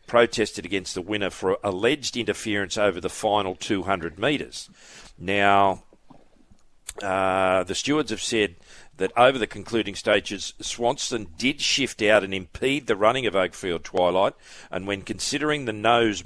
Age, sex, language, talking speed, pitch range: 40-59, male, English, 145 wpm, 95-115 Hz